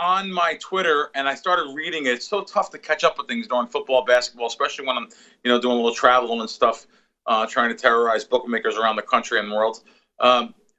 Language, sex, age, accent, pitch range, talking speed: English, male, 40-59, American, 125-205 Hz, 235 wpm